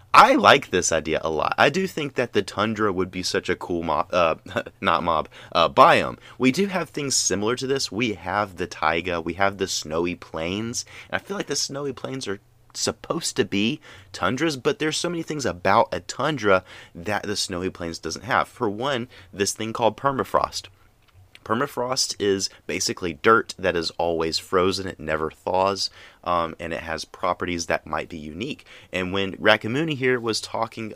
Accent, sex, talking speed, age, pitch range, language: American, male, 185 wpm, 30-49, 85-115 Hz, English